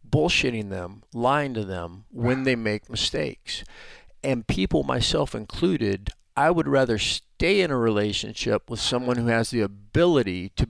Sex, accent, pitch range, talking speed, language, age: male, American, 105-130 Hz, 150 wpm, English, 40-59